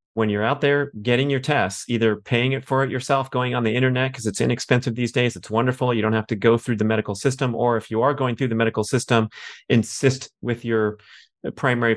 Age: 30-49